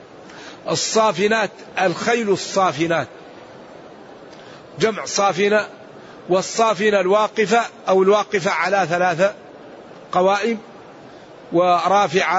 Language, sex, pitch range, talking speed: Arabic, male, 175-205 Hz, 65 wpm